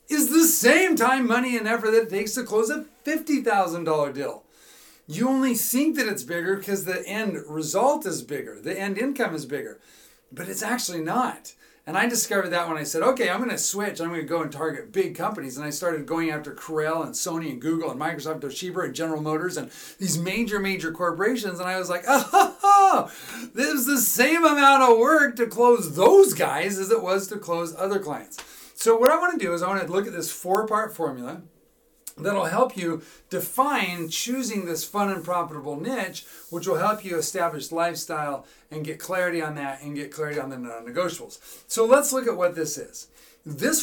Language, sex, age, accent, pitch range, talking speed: English, male, 40-59, American, 160-245 Hz, 205 wpm